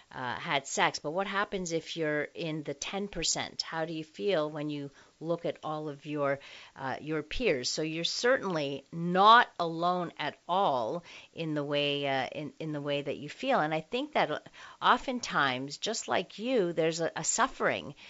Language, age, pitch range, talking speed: English, 50-69, 150-205 Hz, 180 wpm